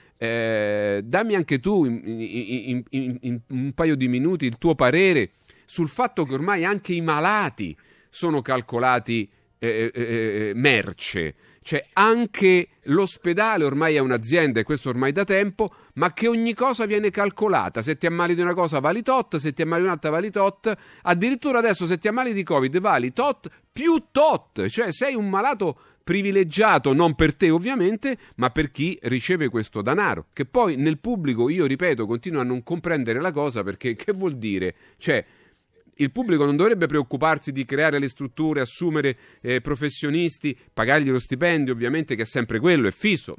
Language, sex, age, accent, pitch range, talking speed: Italian, male, 40-59, native, 125-180 Hz, 175 wpm